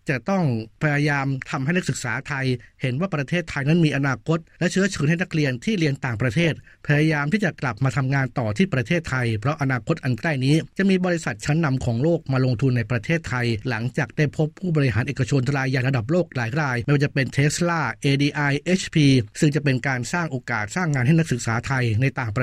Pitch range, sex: 130-160 Hz, male